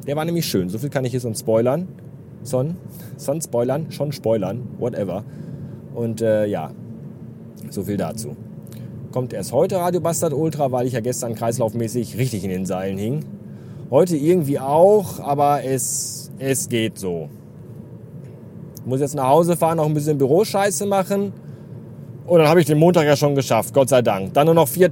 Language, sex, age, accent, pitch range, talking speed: German, male, 30-49, German, 115-160 Hz, 175 wpm